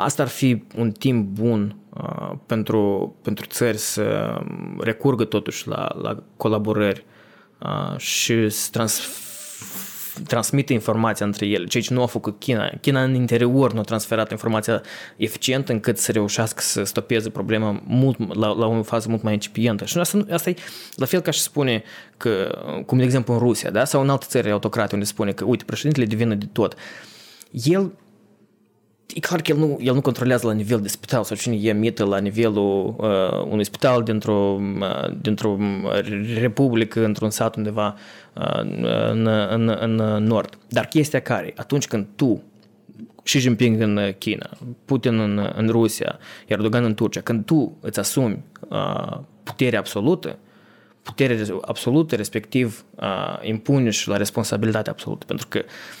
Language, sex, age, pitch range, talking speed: Romanian, male, 20-39, 105-130 Hz, 160 wpm